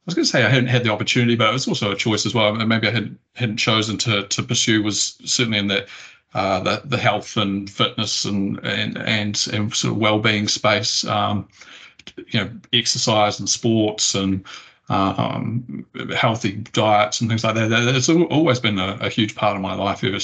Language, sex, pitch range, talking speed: English, male, 100-120 Hz, 215 wpm